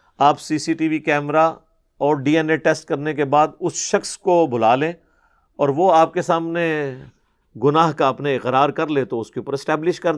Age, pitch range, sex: 50-69, 145-180 Hz, male